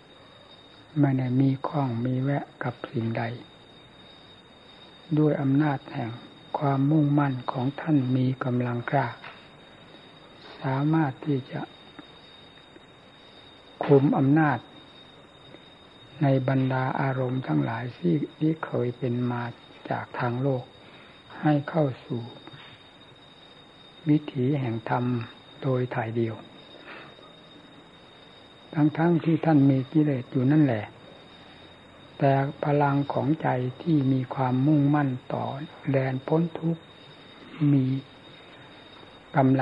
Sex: male